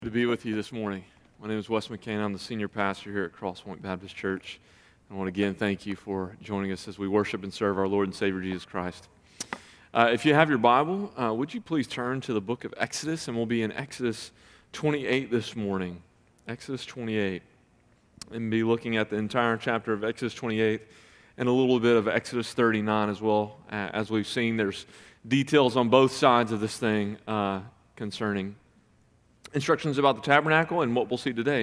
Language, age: English, 30-49